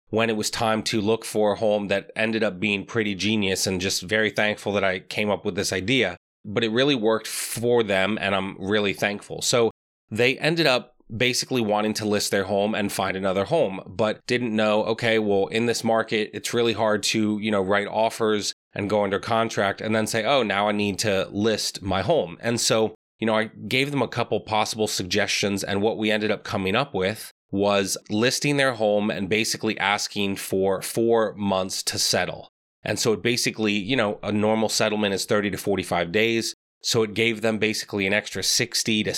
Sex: male